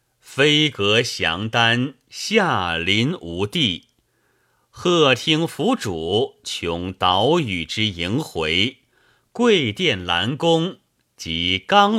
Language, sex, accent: Chinese, male, native